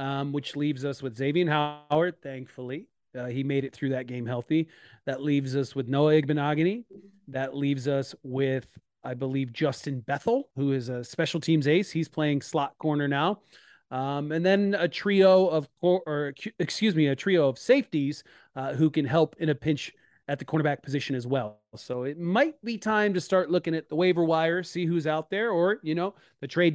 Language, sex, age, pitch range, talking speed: English, male, 30-49, 140-175 Hz, 200 wpm